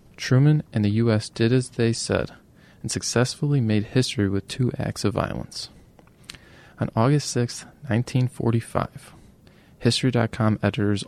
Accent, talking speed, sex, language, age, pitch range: American, 125 wpm, male, English, 20-39, 100-115 Hz